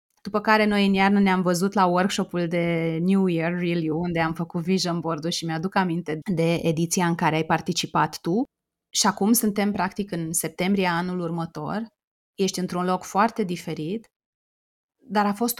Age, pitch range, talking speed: 30-49, 180-235 Hz, 170 wpm